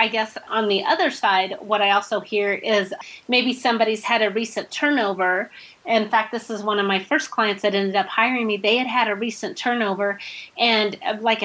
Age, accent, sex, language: 30-49, American, female, English